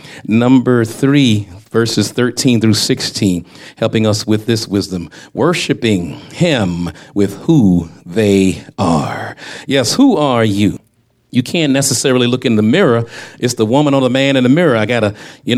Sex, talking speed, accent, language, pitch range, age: male, 160 wpm, American, English, 110-145 Hz, 40-59